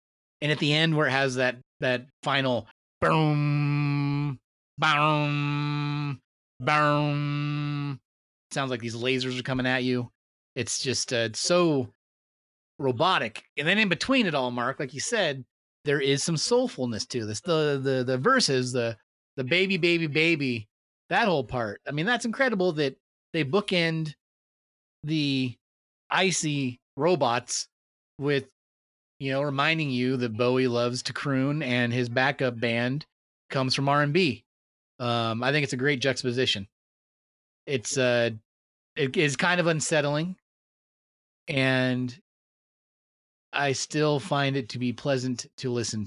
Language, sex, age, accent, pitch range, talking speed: English, male, 30-49, American, 120-145 Hz, 140 wpm